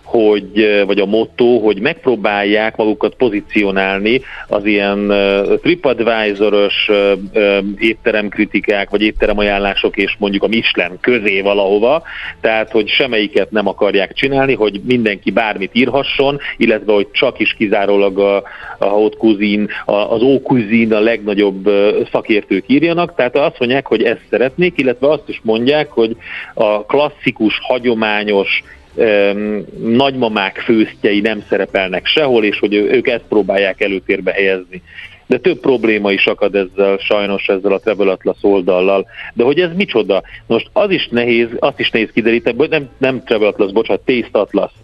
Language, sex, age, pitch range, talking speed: Hungarian, male, 50-69, 100-120 Hz, 135 wpm